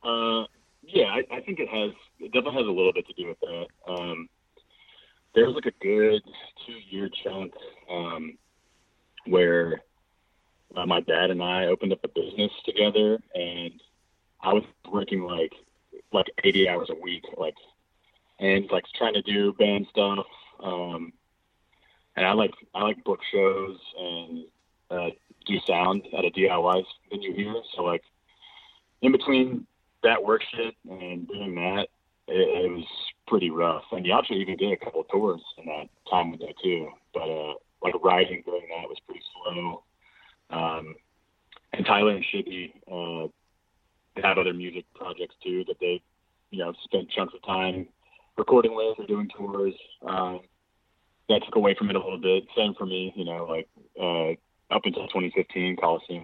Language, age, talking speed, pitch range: English, 30-49, 165 wpm, 85-135 Hz